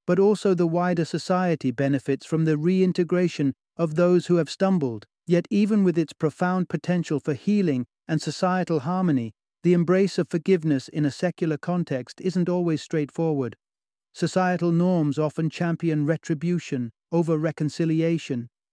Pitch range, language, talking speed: 135-170 Hz, English, 140 wpm